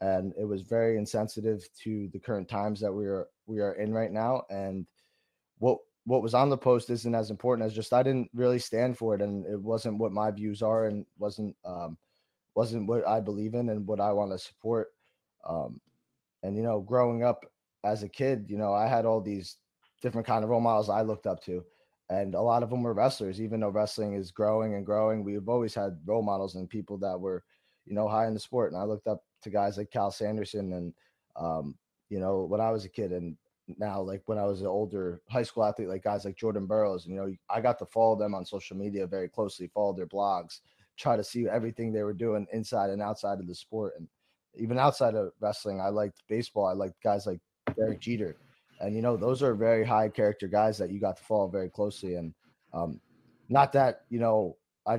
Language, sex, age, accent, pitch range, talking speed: English, male, 20-39, American, 100-115 Hz, 230 wpm